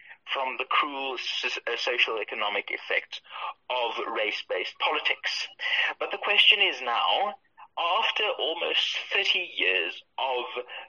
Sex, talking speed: male, 100 wpm